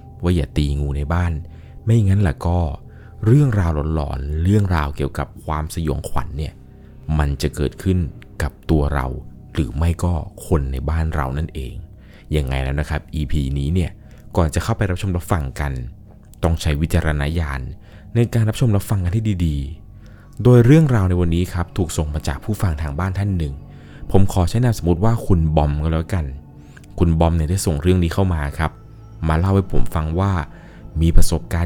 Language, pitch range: Thai, 75-100 Hz